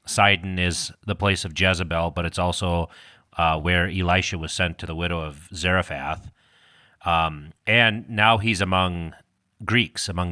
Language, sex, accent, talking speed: English, male, American, 150 wpm